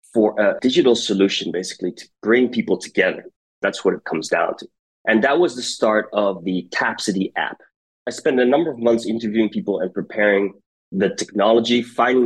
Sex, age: male, 20-39